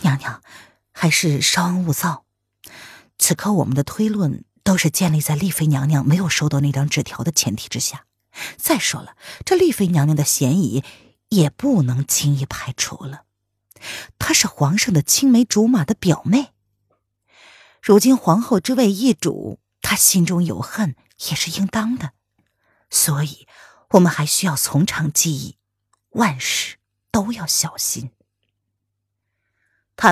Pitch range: 135-195 Hz